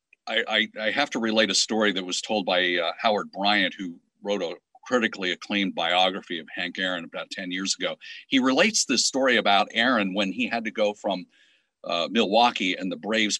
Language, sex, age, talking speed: English, male, 50-69, 195 wpm